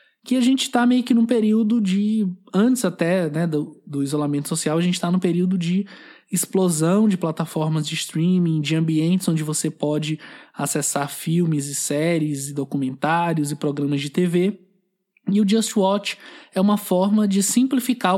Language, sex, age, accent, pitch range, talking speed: Portuguese, male, 20-39, Brazilian, 155-210 Hz, 170 wpm